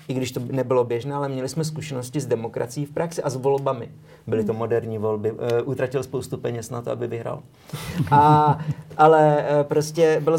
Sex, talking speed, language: male, 185 wpm, Slovak